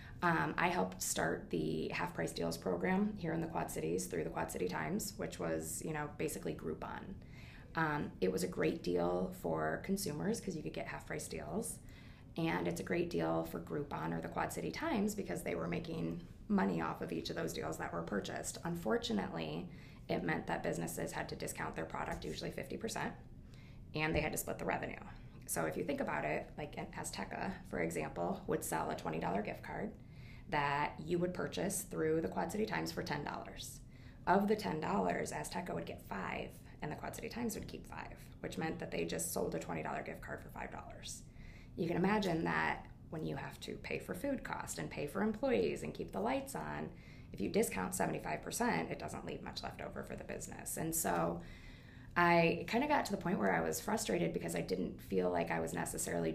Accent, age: American, 20-39